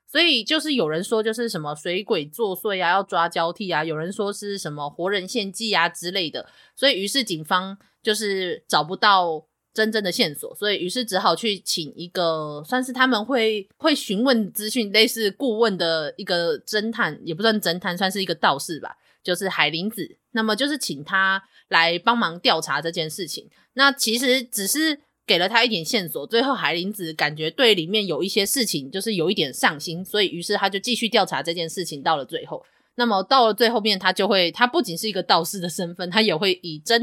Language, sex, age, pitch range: Chinese, female, 20-39, 170-230 Hz